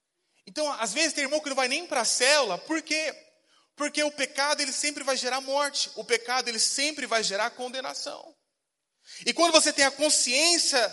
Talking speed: 190 wpm